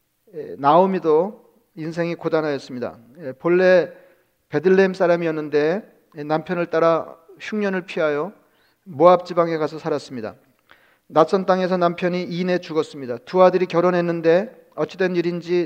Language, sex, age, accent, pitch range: Korean, male, 40-59, native, 155-180 Hz